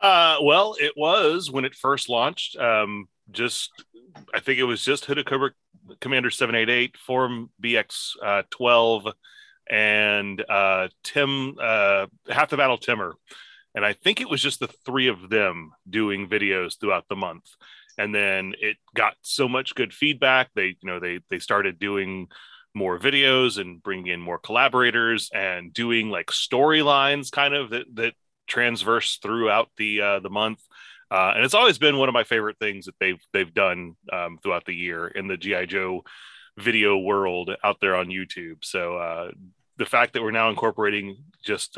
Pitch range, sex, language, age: 100-130 Hz, male, English, 30-49